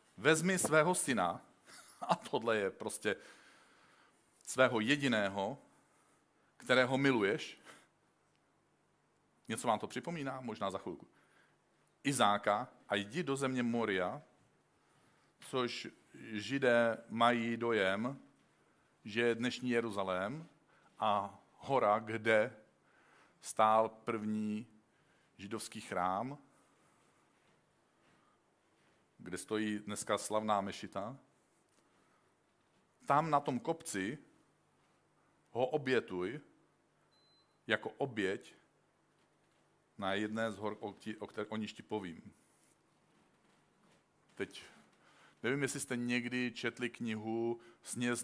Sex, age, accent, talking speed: male, 50-69, native, 85 wpm